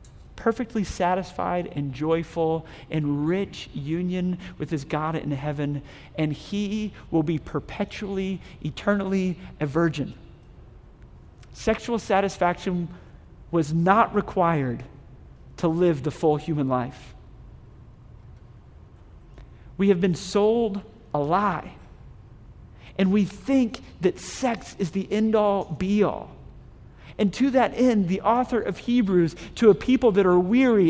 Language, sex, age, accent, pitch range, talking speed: English, male, 40-59, American, 150-225 Hz, 115 wpm